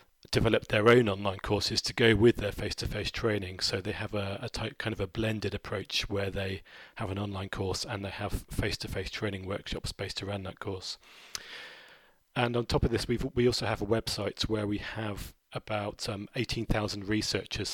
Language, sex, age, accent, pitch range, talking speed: English, male, 30-49, British, 100-115 Hz, 190 wpm